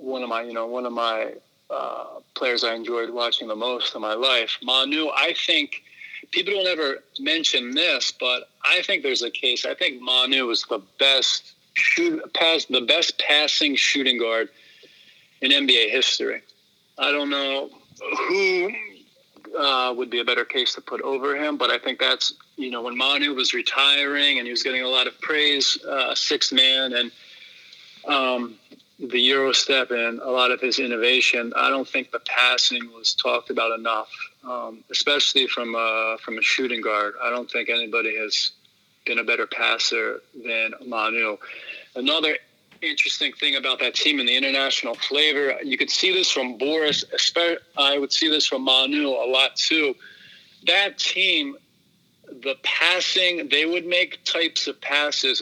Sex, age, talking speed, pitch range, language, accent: male, 40-59, 170 wpm, 120-180 Hz, English, American